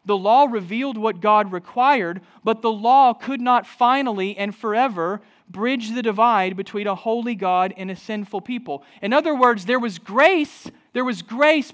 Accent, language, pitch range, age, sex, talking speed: American, English, 180-230 Hz, 40-59, male, 175 wpm